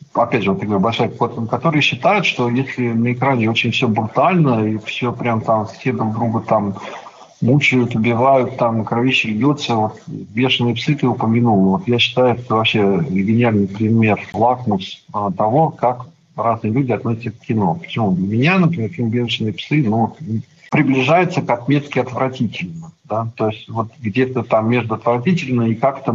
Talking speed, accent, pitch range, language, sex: 160 wpm, native, 110-130 Hz, Russian, male